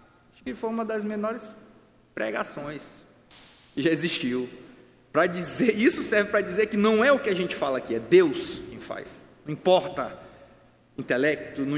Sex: male